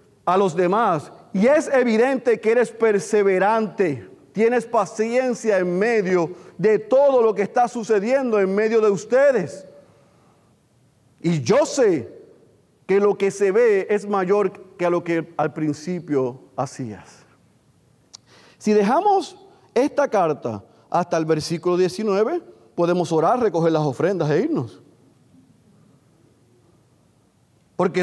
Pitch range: 140-210 Hz